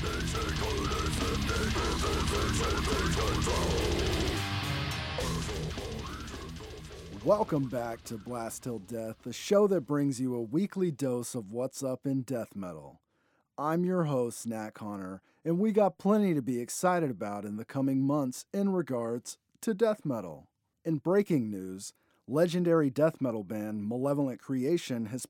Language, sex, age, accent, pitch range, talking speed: English, male, 40-59, American, 115-165 Hz, 125 wpm